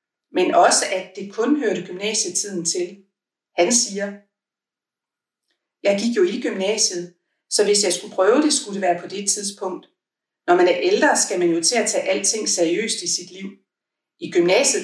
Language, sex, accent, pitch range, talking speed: Danish, female, native, 180-225 Hz, 180 wpm